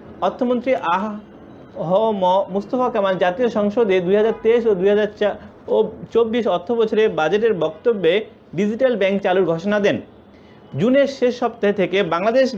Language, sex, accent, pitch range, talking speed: English, male, Indian, 190-245 Hz, 130 wpm